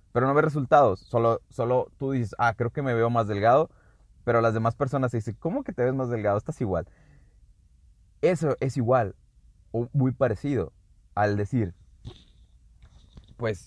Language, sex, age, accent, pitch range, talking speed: Spanish, male, 30-49, Mexican, 95-130 Hz, 165 wpm